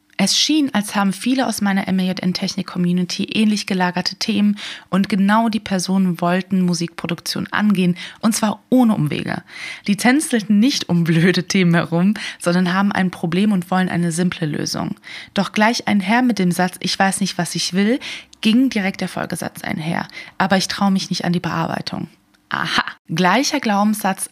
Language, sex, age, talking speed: German, female, 20-39, 165 wpm